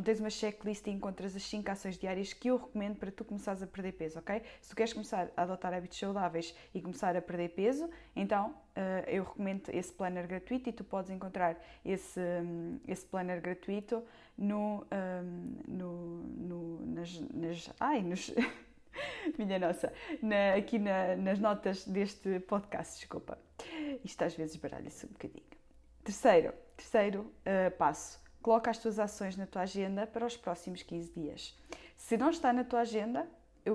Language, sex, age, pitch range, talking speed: Portuguese, female, 20-39, 185-225 Hz, 155 wpm